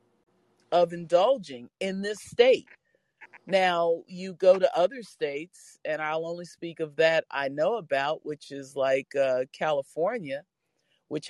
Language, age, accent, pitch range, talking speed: English, 40-59, American, 140-175 Hz, 140 wpm